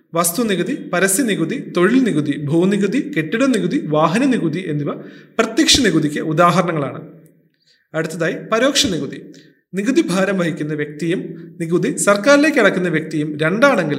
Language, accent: Malayalam, native